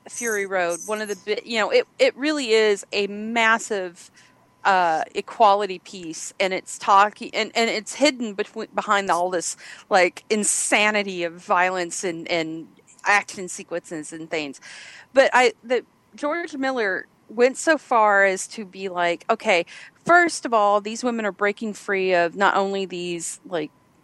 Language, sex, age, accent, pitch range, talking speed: English, female, 30-49, American, 185-225 Hz, 155 wpm